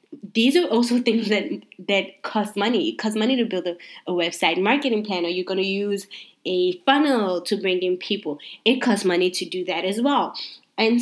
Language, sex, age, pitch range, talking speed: English, female, 20-39, 180-230 Hz, 200 wpm